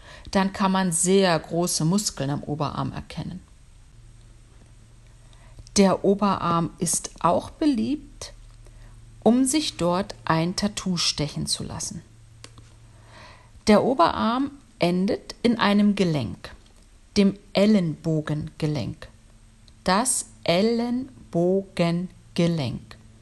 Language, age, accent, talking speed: German, 50-69, German, 85 wpm